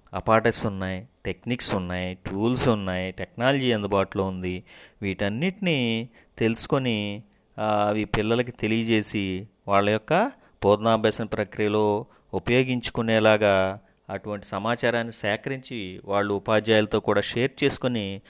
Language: Telugu